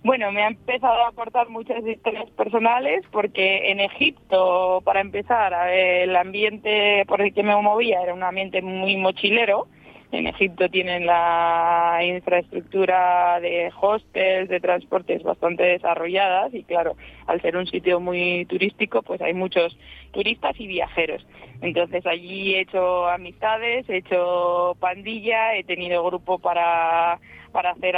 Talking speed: 140 wpm